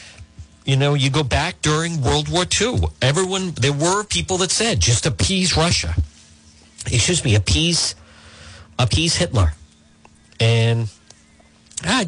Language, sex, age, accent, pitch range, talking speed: English, male, 50-69, American, 95-140 Hz, 125 wpm